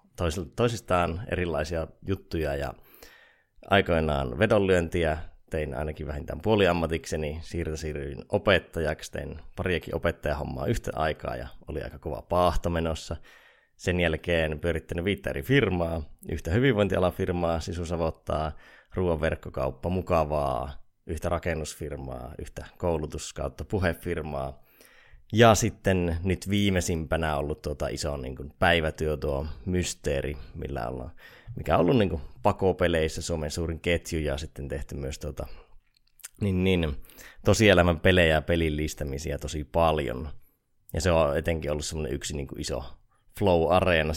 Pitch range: 75-90 Hz